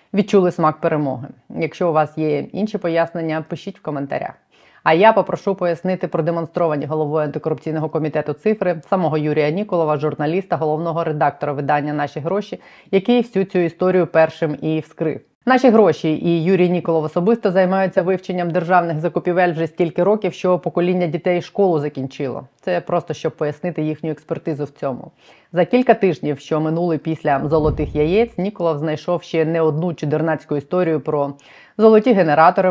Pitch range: 155-185 Hz